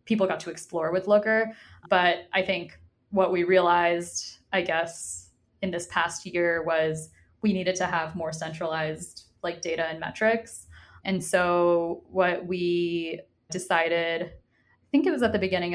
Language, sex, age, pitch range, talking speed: English, female, 20-39, 170-195 Hz, 155 wpm